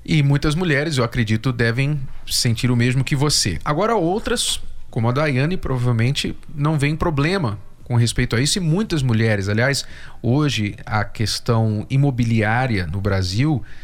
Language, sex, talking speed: Portuguese, male, 145 wpm